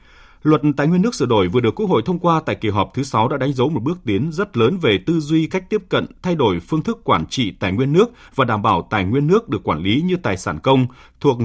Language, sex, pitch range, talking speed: Vietnamese, male, 105-160 Hz, 285 wpm